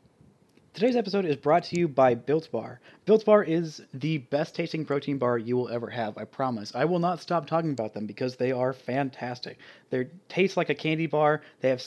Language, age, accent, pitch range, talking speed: English, 30-49, American, 125-160 Hz, 205 wpm